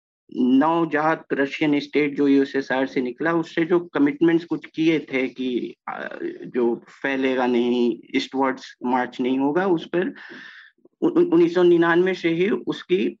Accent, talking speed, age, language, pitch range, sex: native, 115 wpm, 50-69, Hindi, 140-190 Hz, male